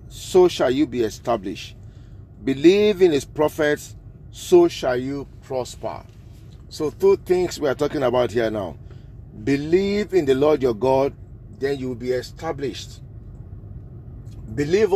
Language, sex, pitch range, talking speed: English, male, 120-175 Hz, 135 wpm